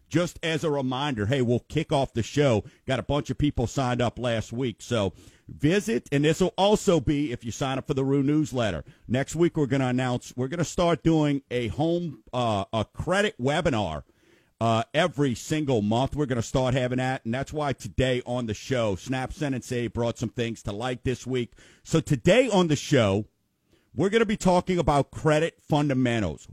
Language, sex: English, male